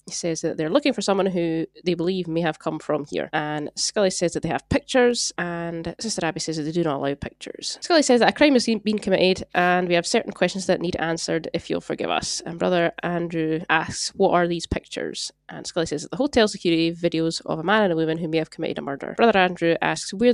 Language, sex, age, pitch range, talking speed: English, female, 20-39, 160-200 Hz, 245 wpm